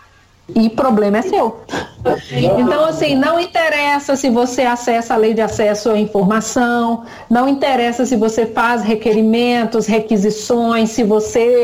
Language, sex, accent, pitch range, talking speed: English, female, Brazilian, 230-295 Hz, 140 wpm